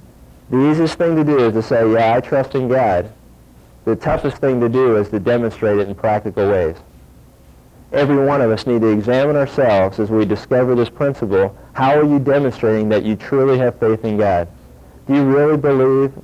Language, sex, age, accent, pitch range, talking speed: English, male, 40-59, American, 105-135 Hz, 195 wpm